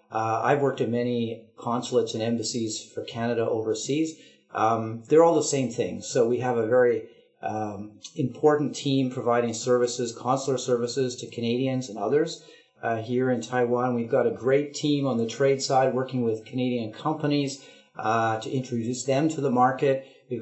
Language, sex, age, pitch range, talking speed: English, male, 40-59, 115-140 Hz, 170 wpm